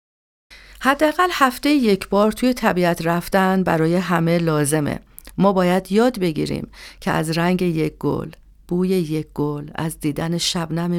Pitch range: 165-210 Hz